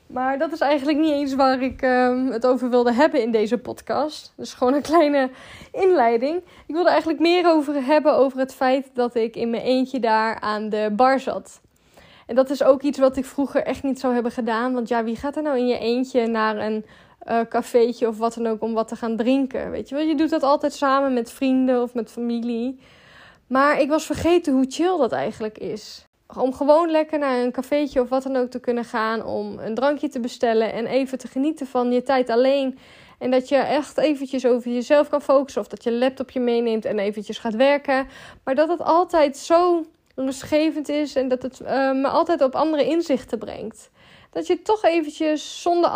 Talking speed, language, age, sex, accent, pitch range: 215 wpm, Dutch, 10-29, female, Dutch, 240-290 Hz